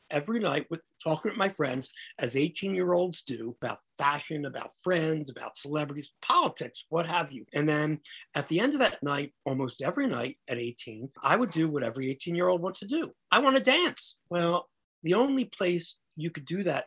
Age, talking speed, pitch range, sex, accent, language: 50-69, 195 wpm, 130-170 Hz, male, American, English